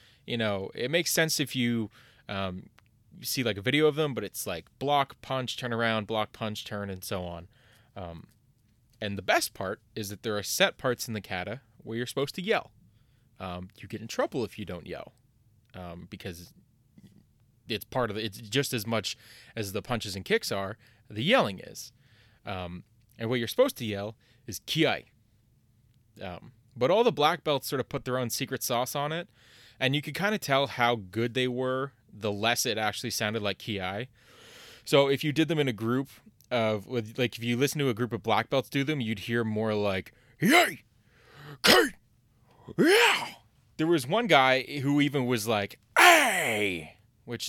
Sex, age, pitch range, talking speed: male, 20-39, 105-130 Hz, 195 wpm